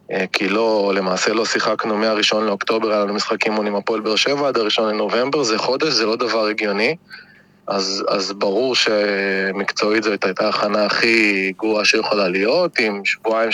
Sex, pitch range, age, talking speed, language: male, 100-115 Hz, 20-39, 165 wpm, Hebrew